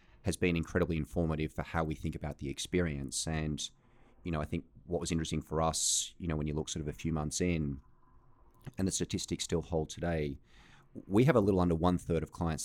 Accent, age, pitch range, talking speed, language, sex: Australian, 30-49, 75-85 Hz, 220 wpm, English, male